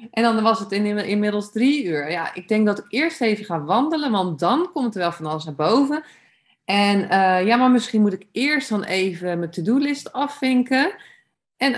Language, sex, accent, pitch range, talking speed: Dutch, female, Dutch, 175-210 Hz, 200 wpm